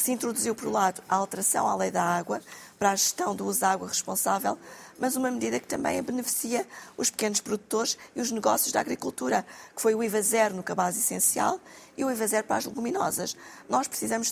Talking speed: 215 wpm